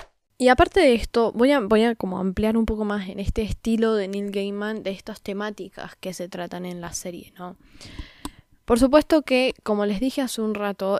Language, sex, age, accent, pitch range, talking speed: Spanish, female, 10-29, Argentinian, 195-250 Hz, 205 wpm